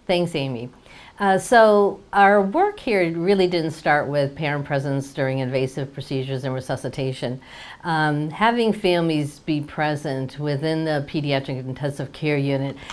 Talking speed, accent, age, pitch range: 135 wpm, American, 50-69, 140-170 Hz